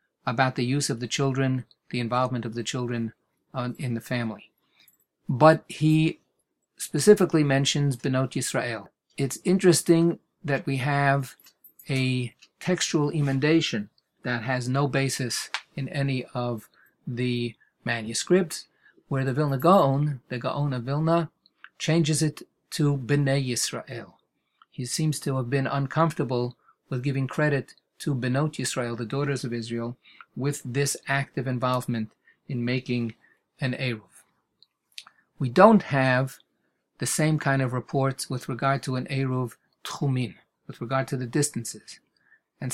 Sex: male